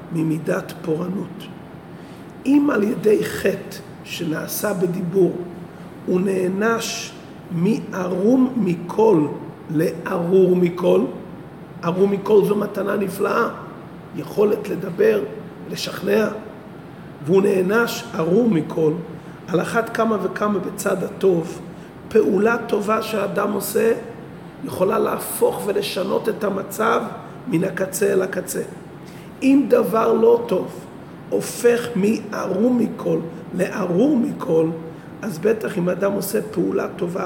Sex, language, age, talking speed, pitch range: male, Hebrew, 50-69, 100 wpm, 175-225 Hz